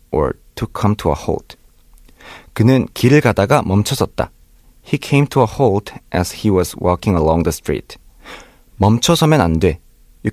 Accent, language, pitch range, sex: native, Korean, 105-150 Hz, male